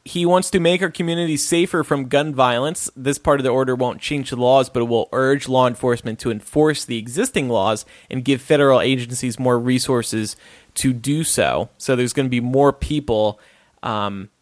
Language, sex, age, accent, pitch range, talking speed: English, male, 30-49, American, 125-160 Hz, 195 wpm